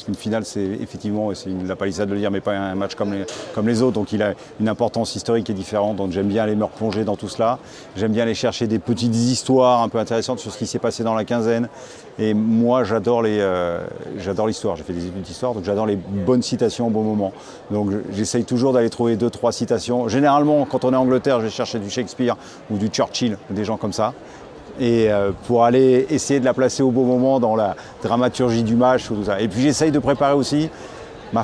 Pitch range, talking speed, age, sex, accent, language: 105-125 Hz, 245 wpm, 40-59, male, French, French